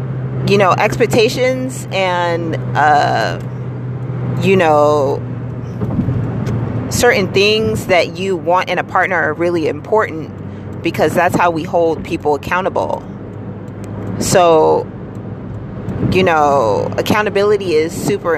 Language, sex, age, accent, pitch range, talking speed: English, female, 30-49, American, 145-185 Hz, 100 wpm